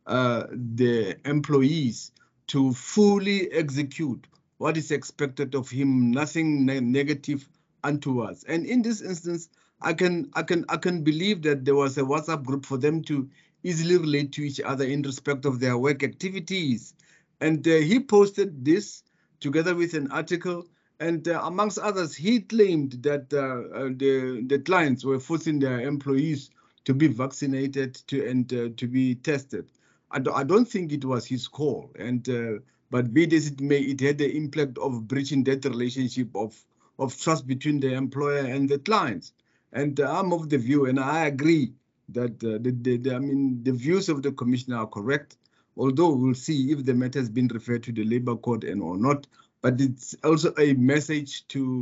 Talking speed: 185 wpm